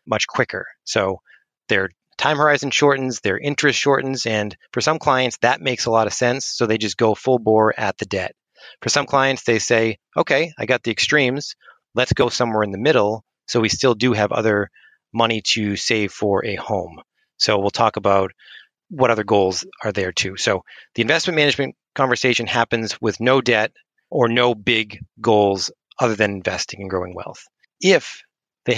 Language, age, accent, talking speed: English, 30-49, American, 185 wpm